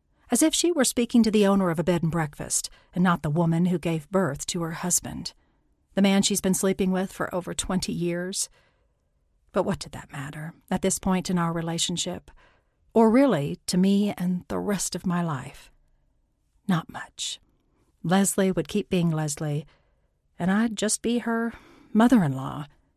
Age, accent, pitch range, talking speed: 50-69, American, 145-205 Hz, 170 wpm